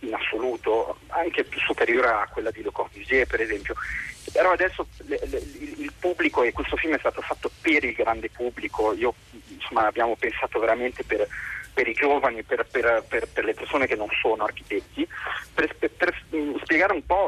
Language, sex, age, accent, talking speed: Italian, male, 40-59, native, 185 wpm